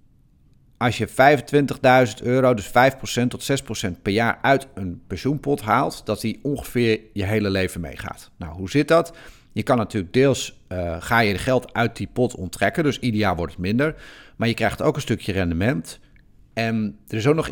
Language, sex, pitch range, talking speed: Dutch, male, 100-130 Hz, 190 wpm